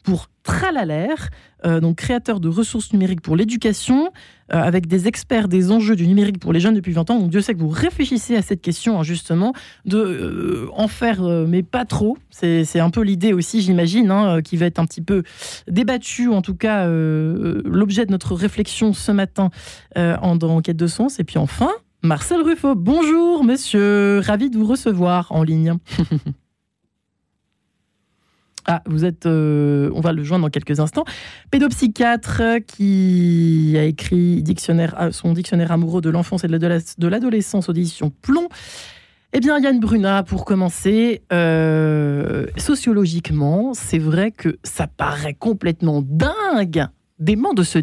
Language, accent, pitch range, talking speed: French, French, 165-220 Hz, 170 wpm